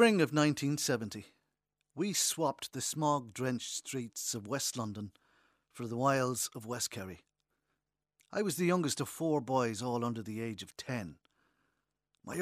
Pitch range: 115-150 Hz